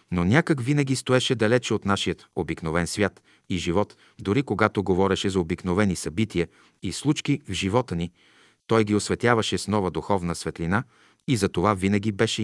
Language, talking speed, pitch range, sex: Bulgarian, 165 wpm, 90-115 Hz, male